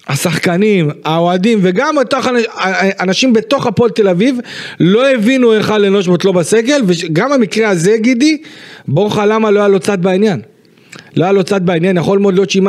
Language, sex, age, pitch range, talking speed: Hebrew, male, 40-59, 155-200 Hz, 175 wpm